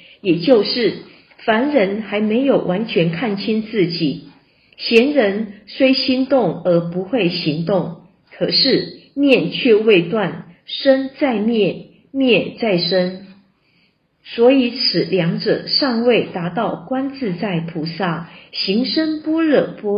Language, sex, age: Chinese, female, 50-69